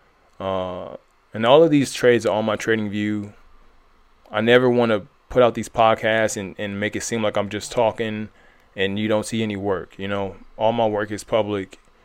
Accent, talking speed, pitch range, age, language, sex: American, 200 wpm, 100-115 Hz, 20-39, English, male